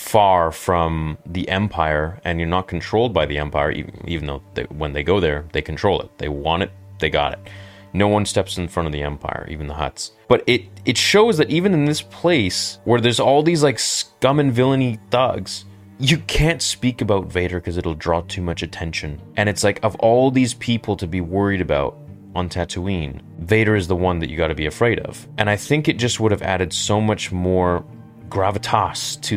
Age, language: 30-49, English